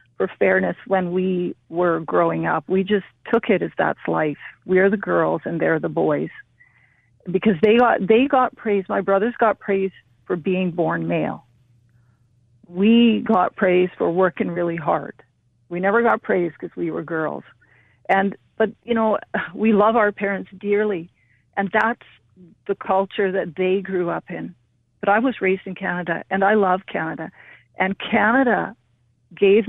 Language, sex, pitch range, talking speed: English, female, 180-210 Hz, 165 wpm